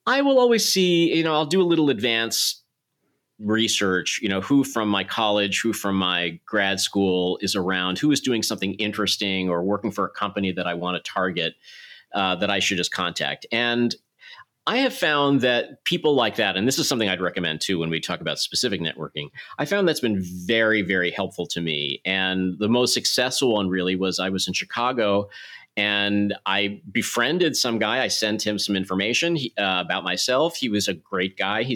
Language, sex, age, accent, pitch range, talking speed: English, male, 40-59, American, 95-125 Hz, 200 wpm